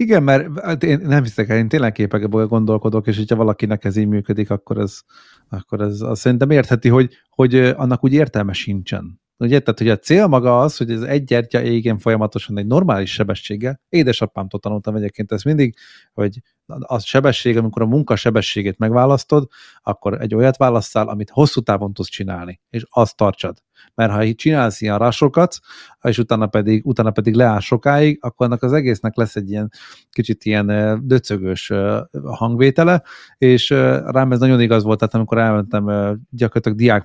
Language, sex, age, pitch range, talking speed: Hungarian, male, 30-49, 105-125 Hz, 170 wpm